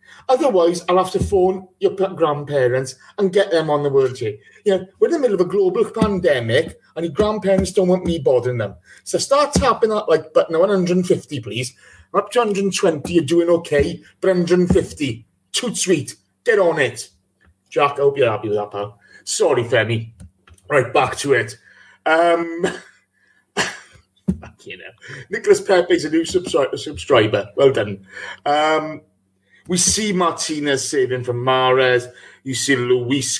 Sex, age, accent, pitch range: male, 30-49, British, 125-195 Hz